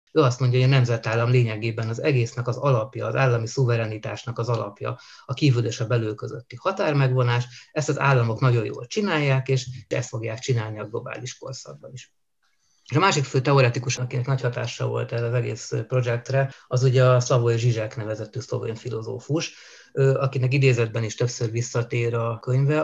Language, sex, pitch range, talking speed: Hungarian, male, 120-145 Hz, 170 wpm